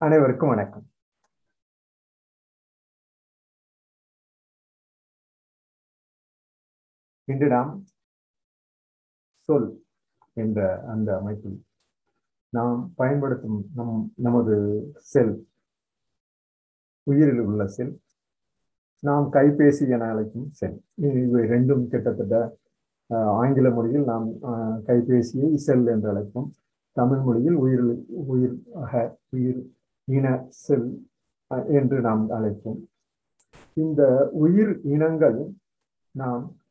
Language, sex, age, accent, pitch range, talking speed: Tamil, male, 50-69, native, 115-140 Hz, 70 wpm